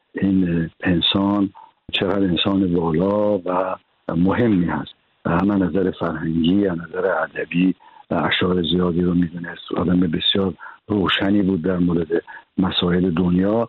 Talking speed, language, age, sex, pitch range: 120 wpm, Persian, 60-79, male, 90-105 Hz